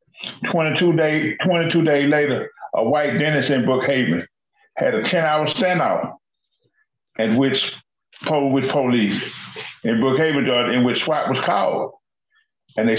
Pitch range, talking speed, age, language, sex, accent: 125-155 Hz, 125 wpm, 50-69, English, male, American